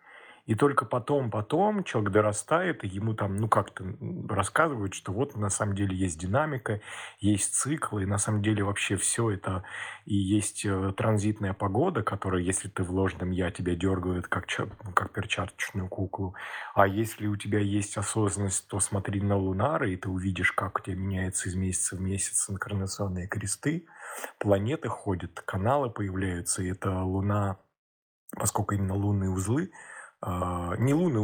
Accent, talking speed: native, 155 wpm